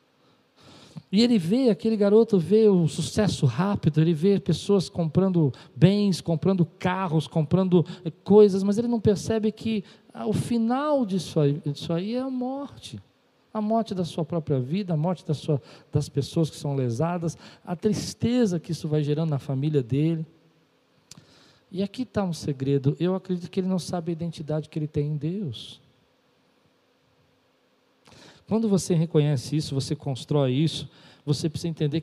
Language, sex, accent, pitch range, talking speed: Portuguese, male, Brazilian, 140-175 Hz, 150 wpm